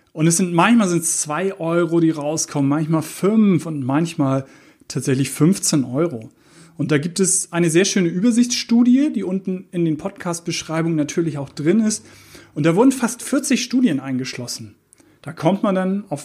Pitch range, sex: 145-195 Hz, male